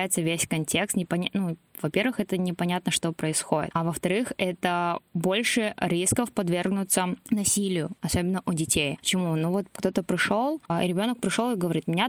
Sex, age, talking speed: female, 20-39, 140 wpm